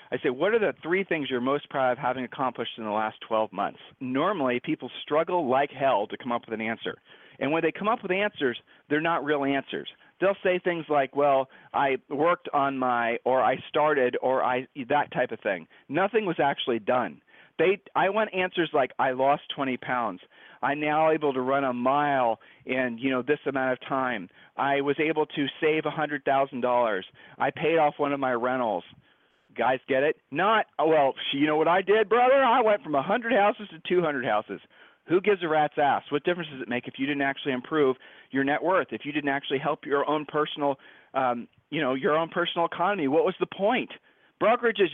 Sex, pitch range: male, 130-170 Hz